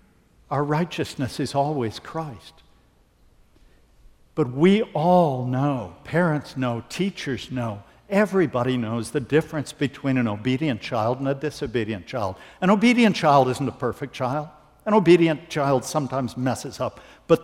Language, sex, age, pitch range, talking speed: English, male, 60-79, 120-155 Hz, 135 wpm